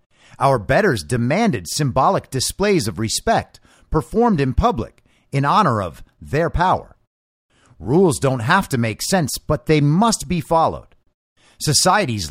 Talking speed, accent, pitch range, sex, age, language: 130 wpm, American, 115-175 Hz, male, 50-69, English